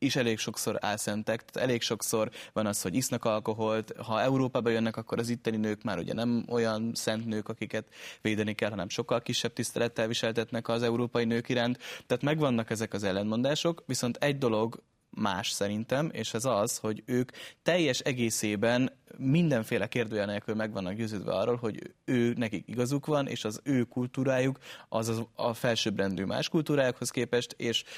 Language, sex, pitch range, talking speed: Hungarian, male, 110-125 Hz, 160 wpm